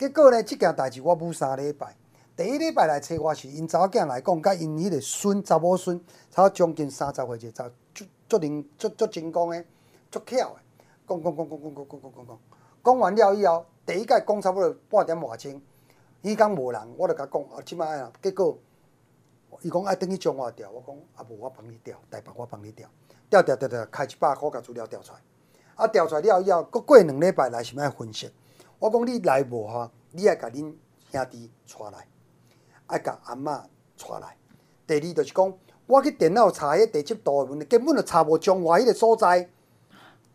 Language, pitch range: Chinese, 145-220 Hz